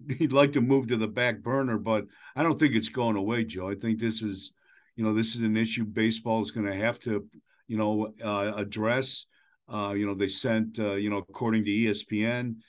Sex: male